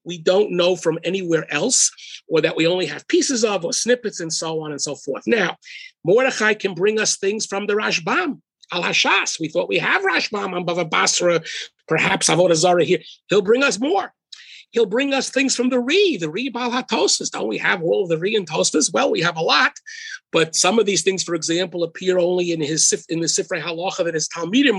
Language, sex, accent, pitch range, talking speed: English, male, American, 165-225 Hz, 215 wpm